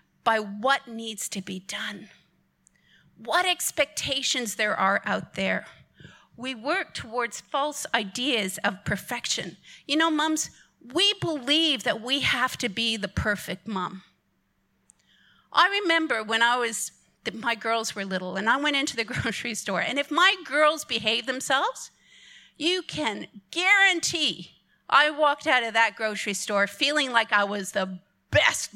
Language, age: English, 50-69